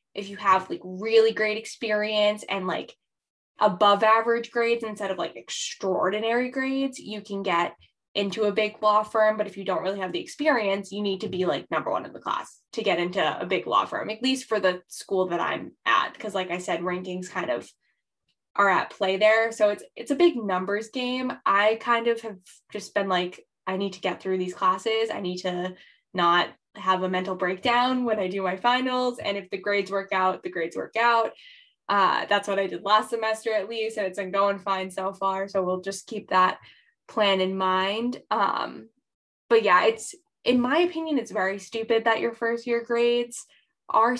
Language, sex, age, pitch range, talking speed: English, female, 10-29, 190-235 Hz, 210 wpm